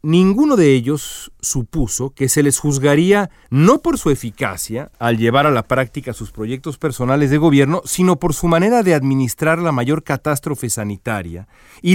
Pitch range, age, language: 115-165 Hz, 40-59, Spanish